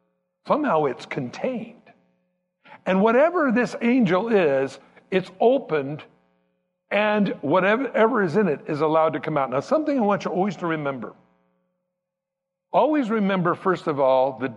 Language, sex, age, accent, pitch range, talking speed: English, male, 60-79, American, 140-210 Hz, 140 wpm